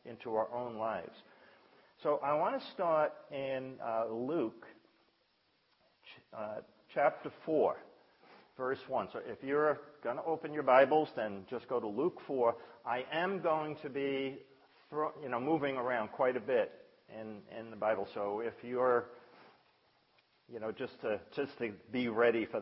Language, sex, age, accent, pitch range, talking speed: English, male, 50-69, American, 110-150 Hz, 160 wpm